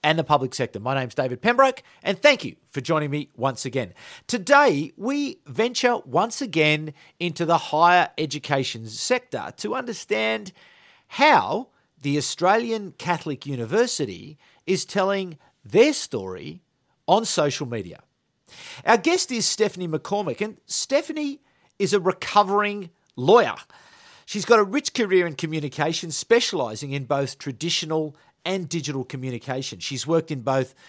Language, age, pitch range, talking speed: English, 50-69, 145-215 Hz, 135 wpm